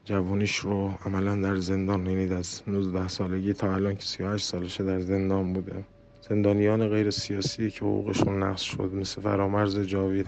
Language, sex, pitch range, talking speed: Persian, male, 90-100 Hz, 150 wpm